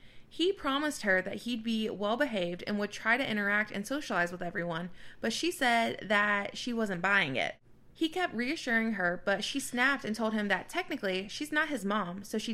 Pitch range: 195-245 Hz